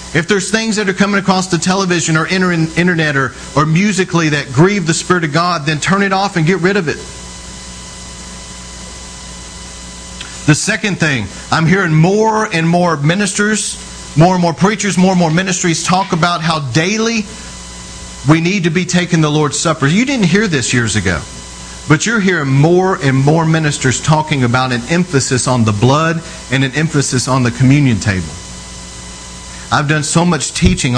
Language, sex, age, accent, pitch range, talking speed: English, male, 40-59, American, 125-185 Hz, 175 wpm